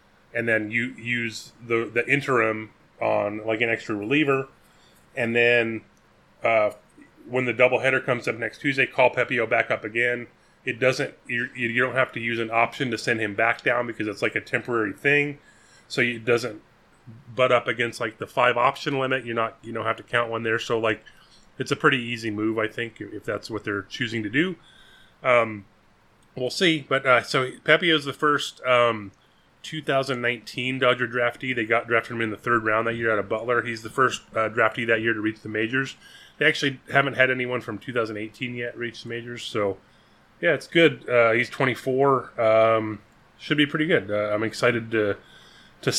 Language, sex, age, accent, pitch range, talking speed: English, male, 30-49, American, 115-130 Hz, 195 wpm